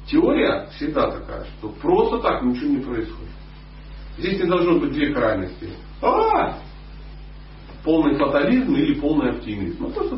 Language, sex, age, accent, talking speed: Russian, male, 40-59, native, 135 wpm